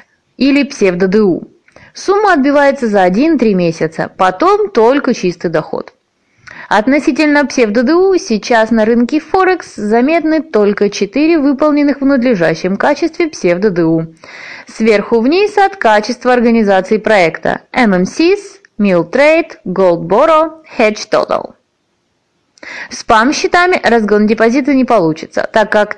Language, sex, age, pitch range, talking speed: Russian, female, 20-39, 190-295 Hz, 100 wpm